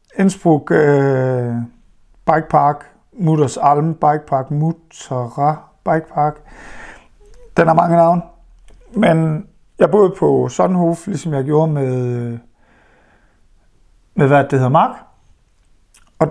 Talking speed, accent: 110 wpm, Danish